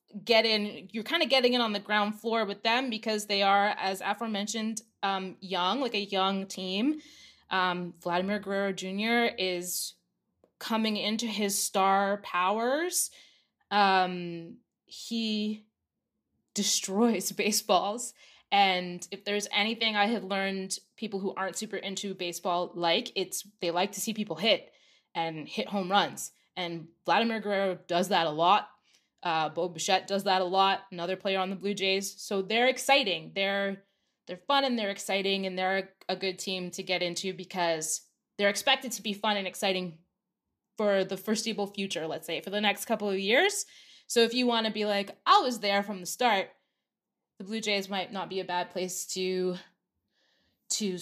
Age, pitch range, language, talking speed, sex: 20-39, 190-225 Hz, English, 170 wpm, female